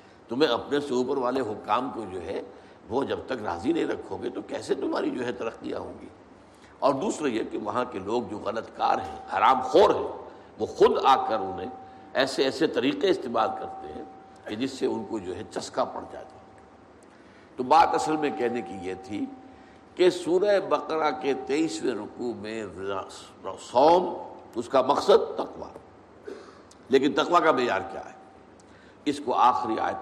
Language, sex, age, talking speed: Urdu, male, 60-79, 170 wpm